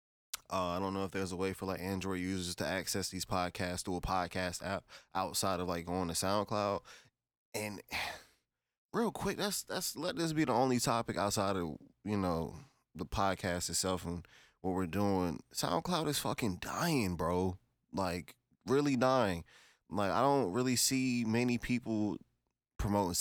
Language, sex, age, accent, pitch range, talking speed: English, male, 20-39, American, 95-130 Hz, 165 wpm